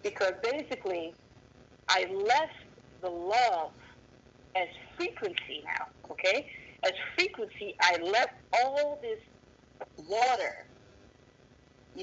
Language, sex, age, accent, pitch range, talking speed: English, female, 40-59, American, 170-240 Hz, 90 wpm